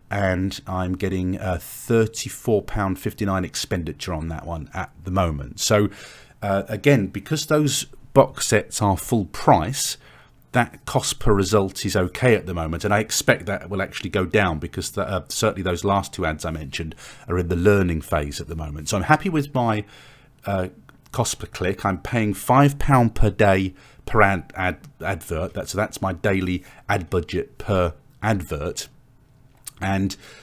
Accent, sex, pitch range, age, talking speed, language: British, male, 90-120 Hz, 40-59, 175 wpm, English